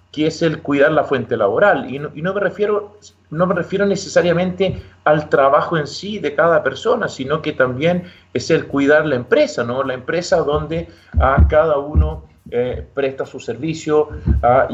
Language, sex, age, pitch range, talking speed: Spanish, male, 40-59, 130-170 Hz, 180 wpm